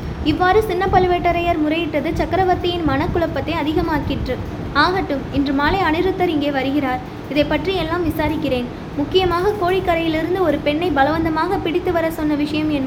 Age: 20-39